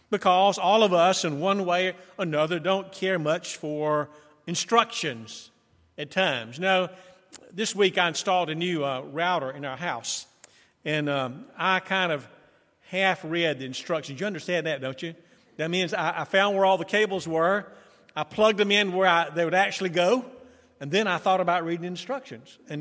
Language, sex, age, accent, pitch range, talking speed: English, male, 40-59, American, 160-210 Hz, 180 wpm